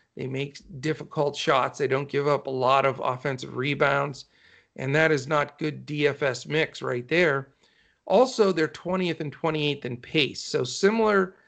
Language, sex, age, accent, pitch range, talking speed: English, male, 50-69, American, 140-175 Hz, 160 wpm